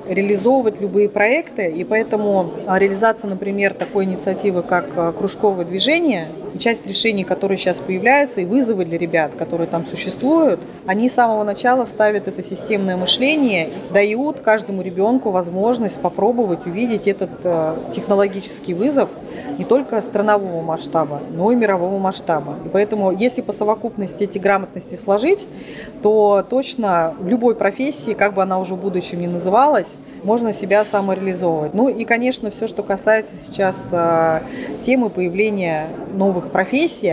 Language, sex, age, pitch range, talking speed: Russian, female, 30-49, 180-220 Hz, 135 wpm